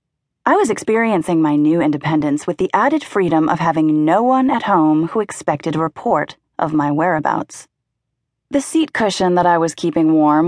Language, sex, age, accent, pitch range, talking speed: English, female, 30-49, American, 160-205 Hz, 180 wpm